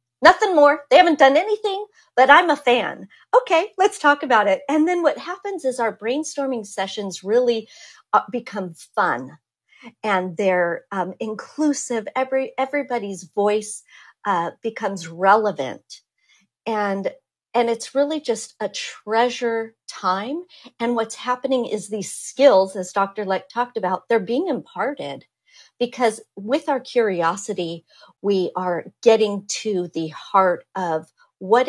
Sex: female